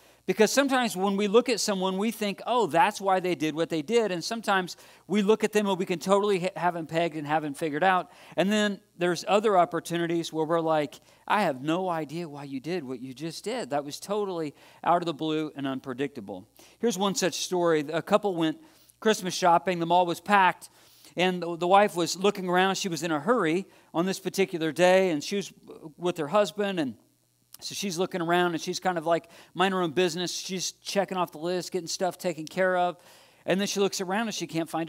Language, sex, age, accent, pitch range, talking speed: English, male, 40-59, American, 155-190 Hz, 225 wpm